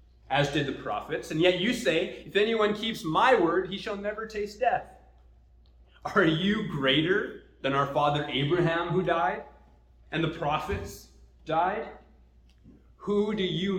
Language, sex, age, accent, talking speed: English, male, 30-49, American, 150 wpm